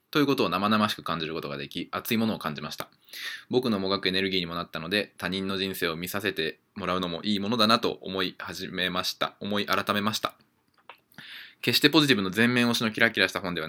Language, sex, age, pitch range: Japanese, male, 20-39, 85-110 Hz